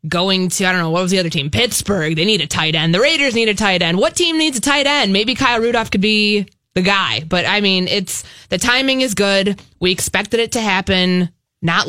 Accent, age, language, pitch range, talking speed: American, 20-39, English, 170-205 Hz, 245 wpm